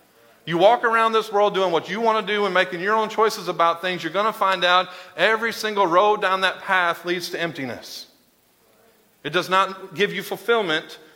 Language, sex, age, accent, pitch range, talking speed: English, male, 40-59, American, 165-200 Hz, 205 wpm